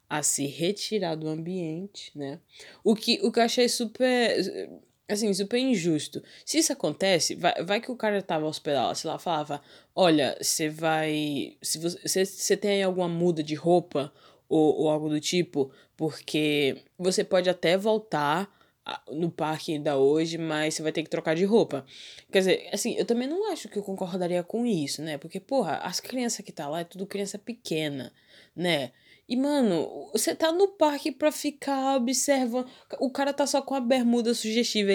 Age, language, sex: 20-39, Portuguese, female